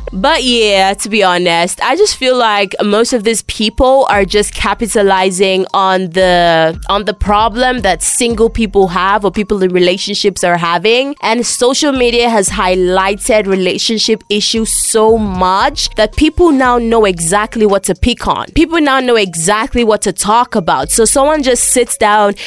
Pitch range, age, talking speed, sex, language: 195-255 Hz, 20-39, 165 wpm, female, English